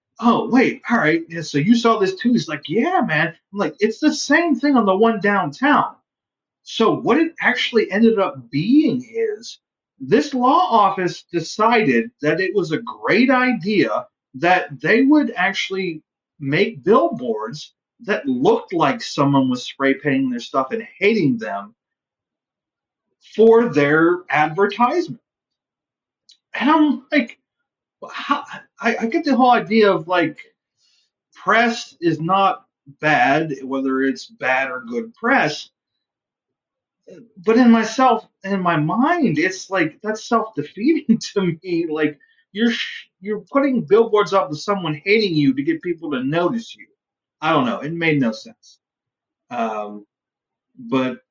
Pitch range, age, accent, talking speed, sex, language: 150-245 Hz, 30-49, American, 140 wpm, male, English